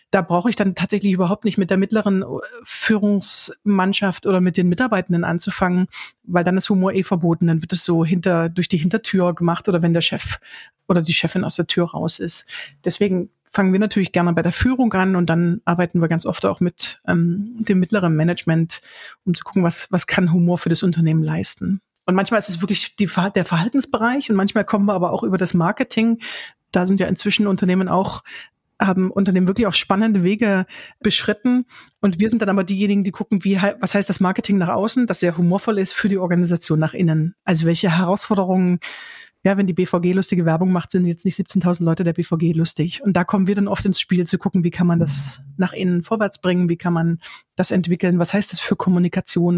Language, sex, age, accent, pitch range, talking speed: German, female, 40-59, German, 175-200 Hz, 210 wpm